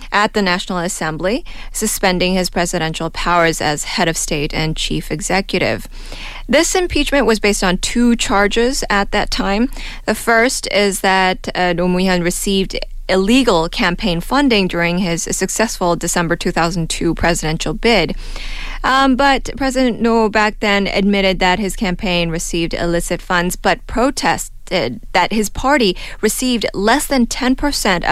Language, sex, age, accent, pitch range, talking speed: English, female, 20-39, American, 170-220 Hz, 140 wpm